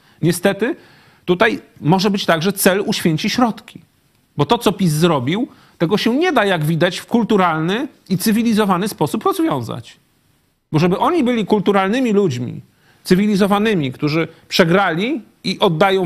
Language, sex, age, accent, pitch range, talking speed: Polish, male, 40-59, native, 160-210 Hz, 140 wpm